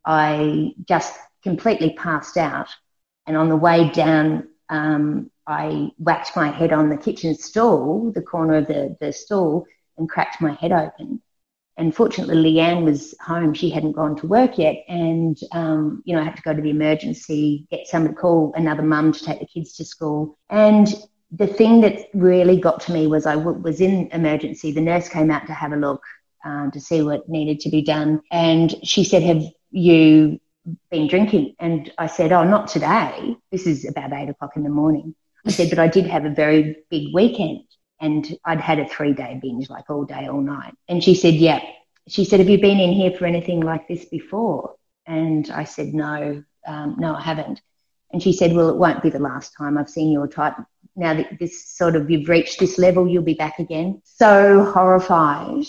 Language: English